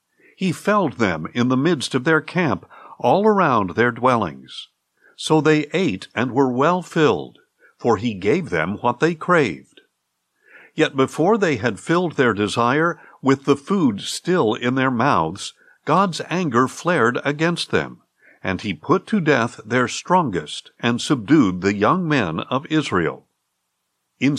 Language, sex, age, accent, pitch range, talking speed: English, male, 60-79, American, 120-175 Hz, 150 wpm